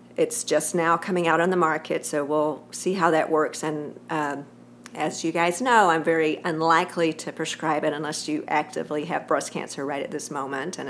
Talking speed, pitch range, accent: 205 wpm, 155-185 Hz, American